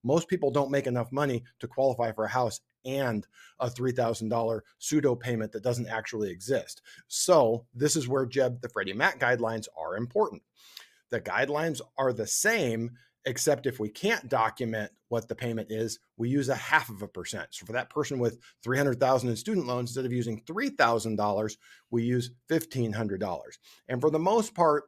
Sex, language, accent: male, English, American